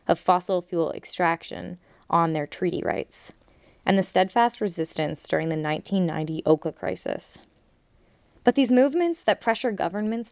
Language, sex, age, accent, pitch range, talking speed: English, female, 20-39, American, 170-210 Hz, 135 wpm